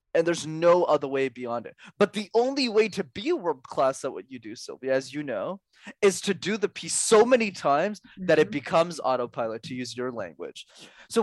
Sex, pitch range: male, 145-205 Hz